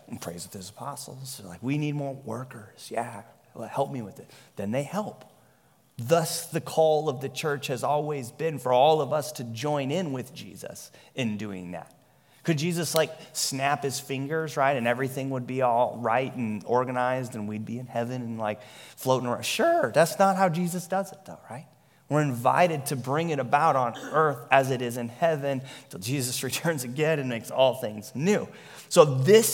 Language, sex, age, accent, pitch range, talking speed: English, male, 30-49, American, 125-155 Hz, 195 wpm